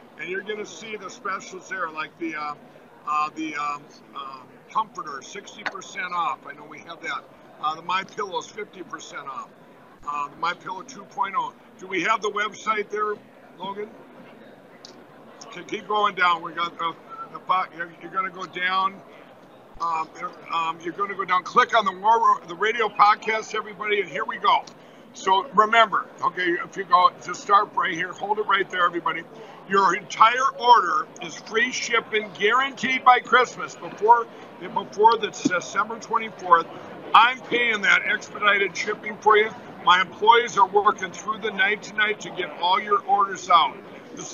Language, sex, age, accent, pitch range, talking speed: English, male, 50-69, American, 185-230 Hz, 165 wpm